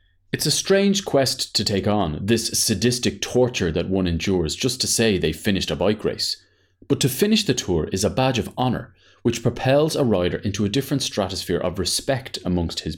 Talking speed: 200 wpm